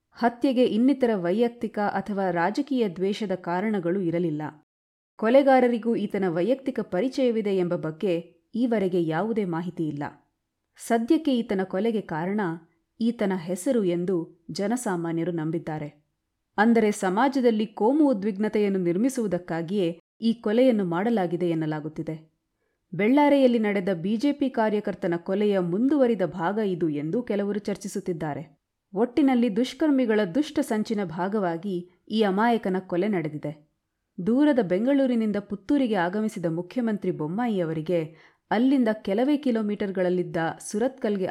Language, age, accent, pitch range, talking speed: Kannada, 30-49, native, 175-235 Hz, 95 wpm